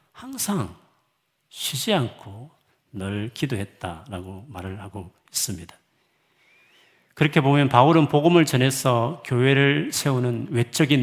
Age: 40-59